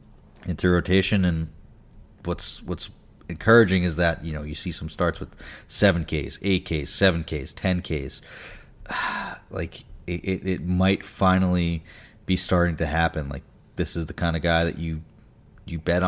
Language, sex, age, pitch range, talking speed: English, male, 30-49, 80-90 Hz, 160 wpm